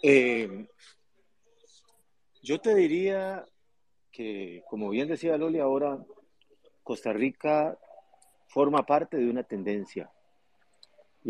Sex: male